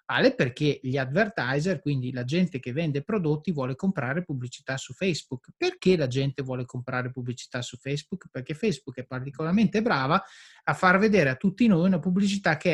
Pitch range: 140-210 Hz